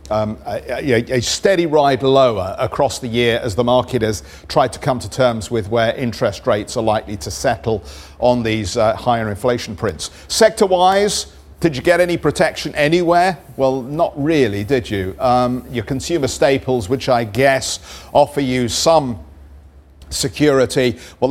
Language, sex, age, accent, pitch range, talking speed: English, male, 50-69, British, 105-135 Hz, 160 wpm